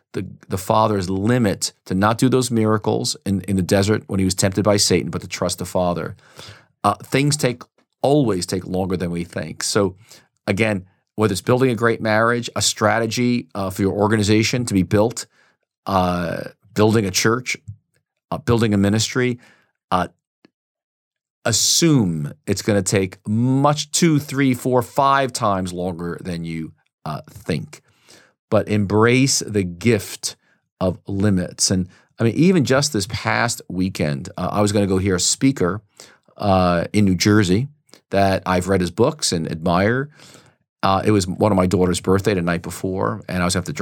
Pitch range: 95-115 Hz